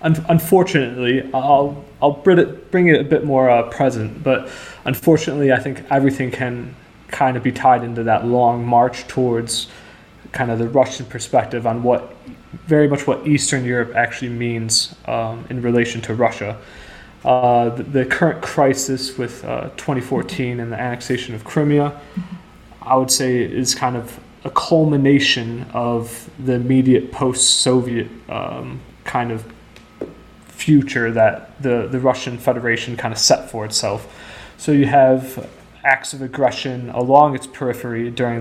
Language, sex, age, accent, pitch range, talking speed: English, male, 20-39, American, 115-130 Hz, 150 wpm